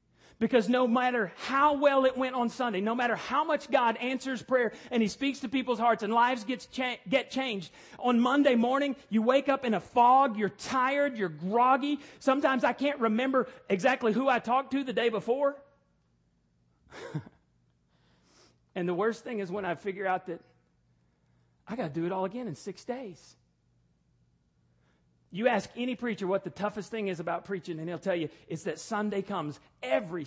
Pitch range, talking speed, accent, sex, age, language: 170-255 Hz, 180 wpm, American, male, 40-59, English